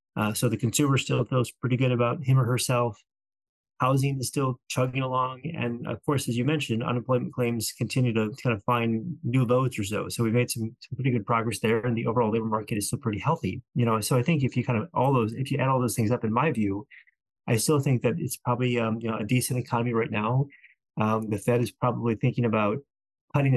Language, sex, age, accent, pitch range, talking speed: English, male, 30-49, American, 110-130 Hz, 240 wpm